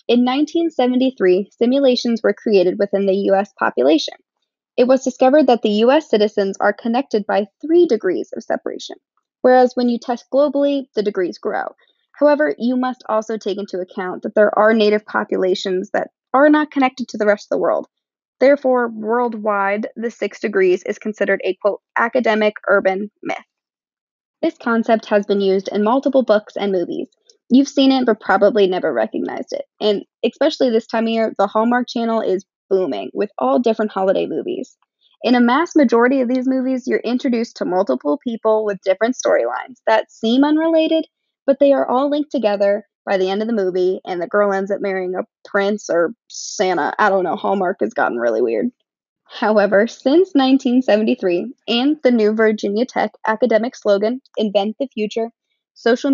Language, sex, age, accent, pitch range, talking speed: English, female, 20-39, American, 205-265 Hz, 170 wpm